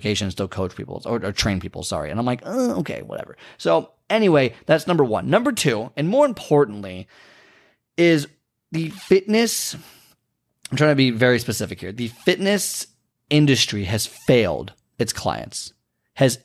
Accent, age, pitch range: American, 30-49, 120-155 Hz